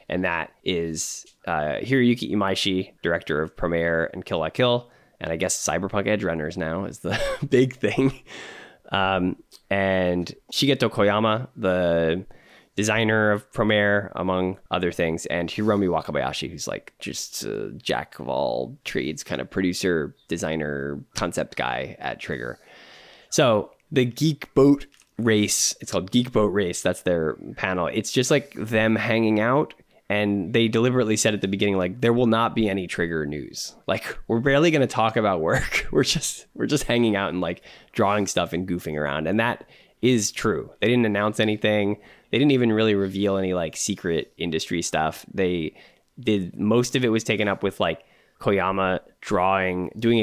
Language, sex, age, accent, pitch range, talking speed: English, male, 20-39, American, 90-115 Hz, 165 wpm